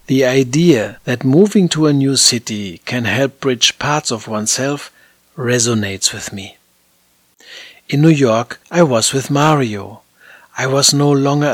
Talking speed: 145 wpm